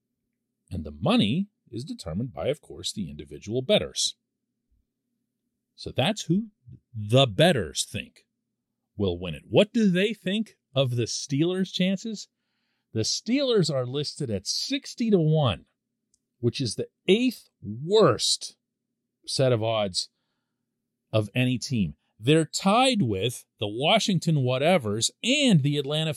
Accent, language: American, English